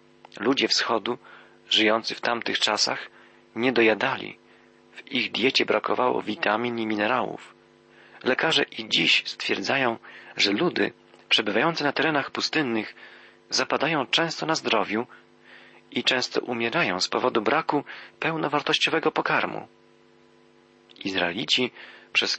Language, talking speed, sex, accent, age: Polish, 105 wpm, male, native, 40-59